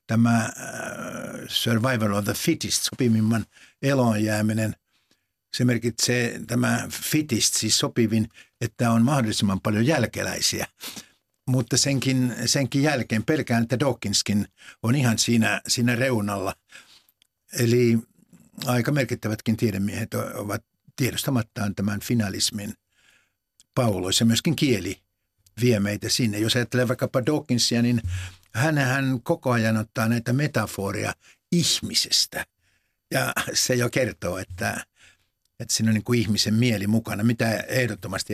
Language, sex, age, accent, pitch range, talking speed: Finnish, male, 60-79, native, 110-130 Hz, 110 wpm